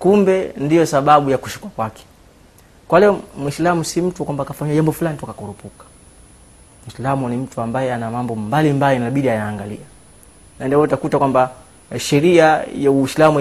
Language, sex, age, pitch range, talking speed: Swahili, male, 30-49, 110-140 Hz, 145 wpm